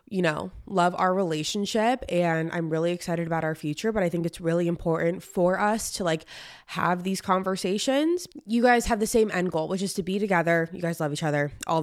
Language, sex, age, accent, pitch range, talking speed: English, female, 20-39, American, 175-235 Hz, 220 wpm